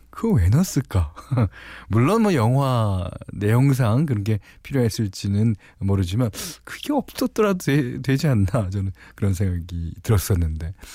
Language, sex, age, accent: Korean, male, 40-59, native